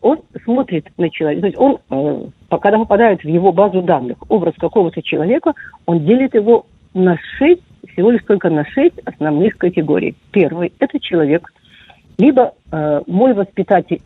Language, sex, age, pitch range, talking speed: Russian, female, 50-69, 175-250 Hz, 155 wpm